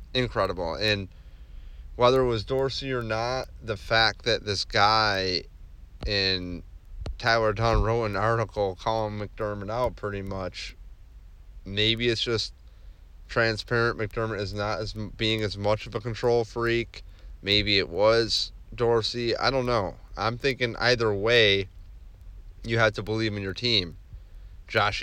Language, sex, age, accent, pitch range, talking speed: English, male, 30-49, American, 90-115 Hz, 140 wpm